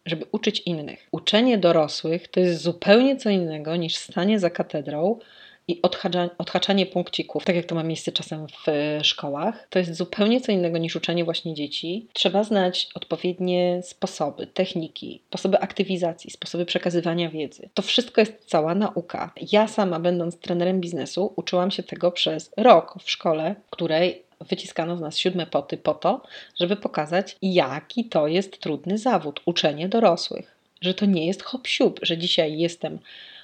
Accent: native